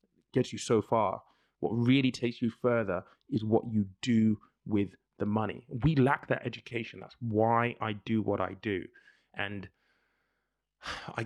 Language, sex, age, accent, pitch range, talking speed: English, male, 20-39, British, 105-120 Hz, 155 wpm